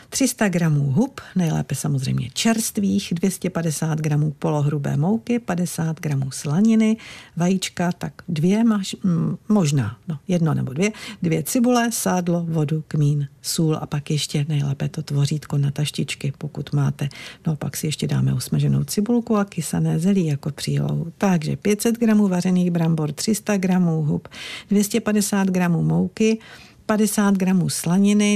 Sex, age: female, 50-69